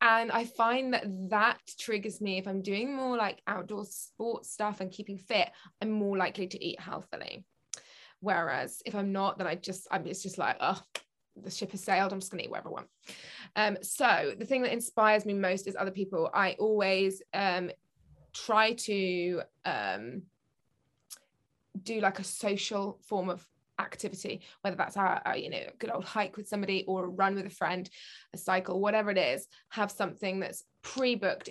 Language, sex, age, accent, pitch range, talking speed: English, female, 20-39, British, 190-215 Hz, 185 wpm